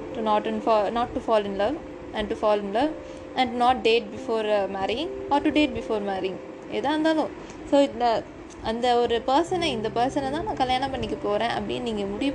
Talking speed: 195 wpm